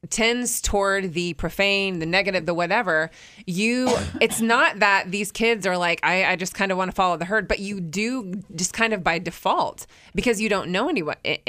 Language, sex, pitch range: English, female, 170-205 Hz